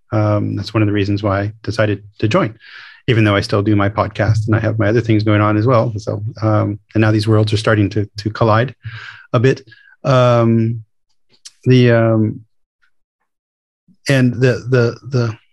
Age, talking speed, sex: 30-49, 180 wpm, male